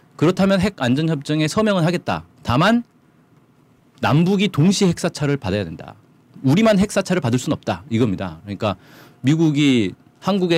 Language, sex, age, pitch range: Korean, male, 40-59, 125-170 Hz